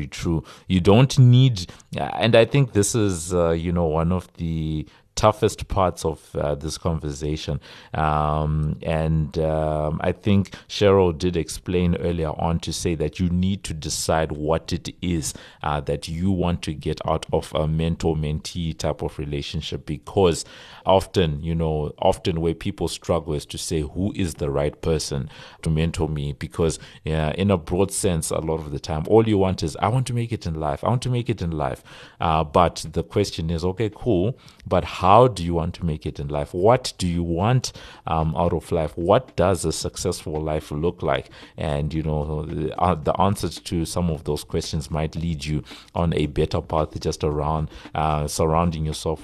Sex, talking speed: male, 195 wpm